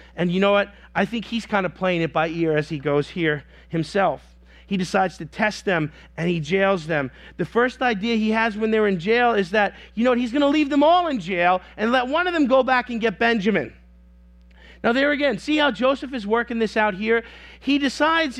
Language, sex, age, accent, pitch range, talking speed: English, male, 40-59, American, 160-235 Hz, 235 wpm